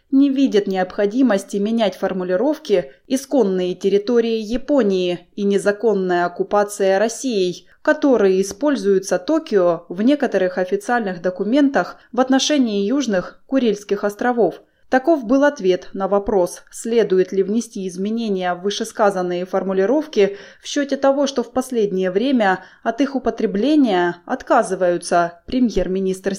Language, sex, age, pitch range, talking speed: Russian, female, 20-39, 190-245 Hz, 110 wpm